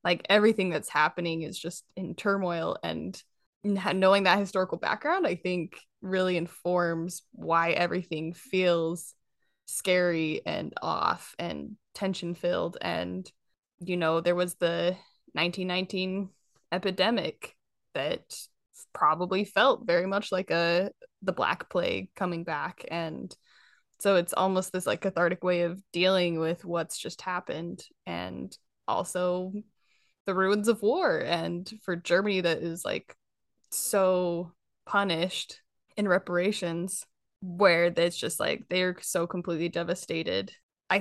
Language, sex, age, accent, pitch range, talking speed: English, female, 10-29, American, 170-195 Hz, 125 wpm